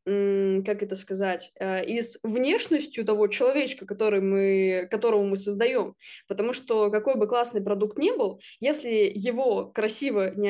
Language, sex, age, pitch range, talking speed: Russian, female, 20-39, 205-260 Hz, 145 wpm